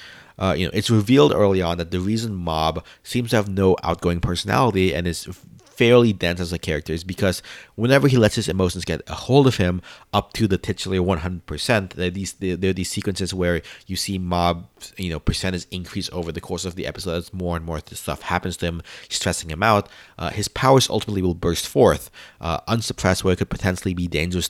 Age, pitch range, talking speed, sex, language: 30-49, 85-105 Hz, 225 wpm, male, English